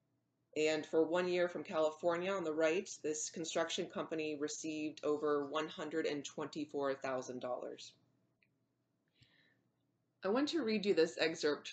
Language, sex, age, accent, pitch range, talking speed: English, female, 30-49, American, 145-170 Hz, 115 wpm